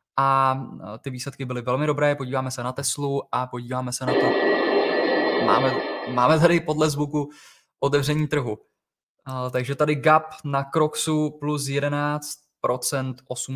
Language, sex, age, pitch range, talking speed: Czech, male, 20-39, 125-145 Hz, 130 wpm